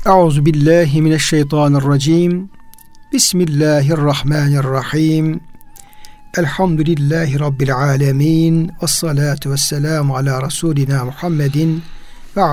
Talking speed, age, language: 55 wpm, 60-79, Turkish